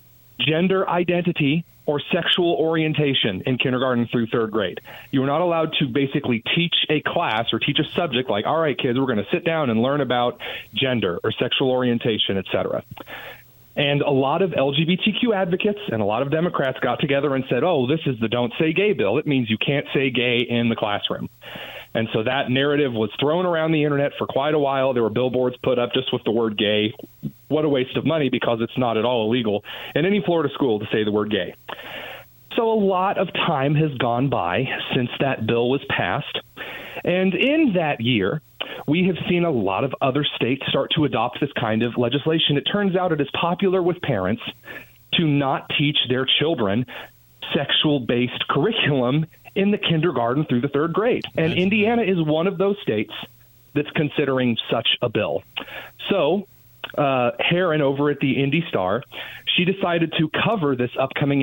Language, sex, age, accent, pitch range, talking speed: English, male, 40-59, American, 125-165 Hz, 190 wpm